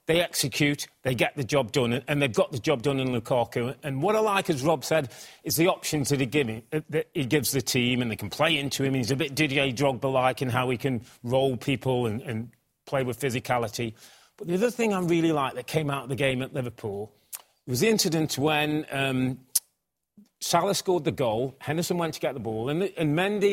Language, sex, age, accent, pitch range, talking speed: English, male, 30-49, British, 130-170 Hz, 235 wpm